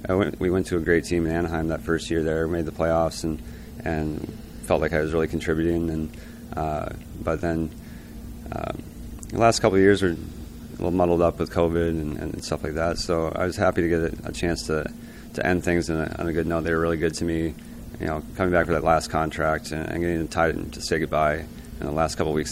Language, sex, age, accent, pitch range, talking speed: English, male, 30-49, American, 80-85 Hz, 230 wpm